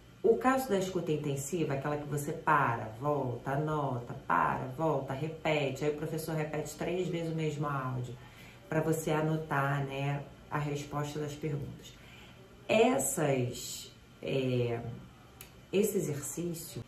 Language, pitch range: Portuguese, 140-170 Hz